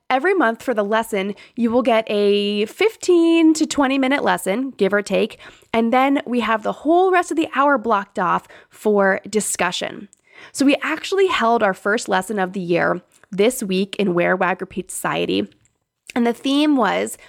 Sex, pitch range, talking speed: female, 195-270 Hz, 175 wpm